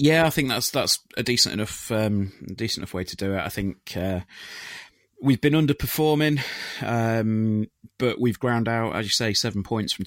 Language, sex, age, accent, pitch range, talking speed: English, male, 20-39, British, 90-120 Hz, 190 wpm